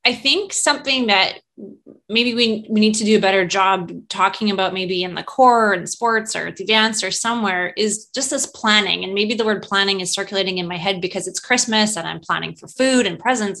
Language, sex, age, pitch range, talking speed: English, female, 20-39, 195-245 Hz, 220 wpm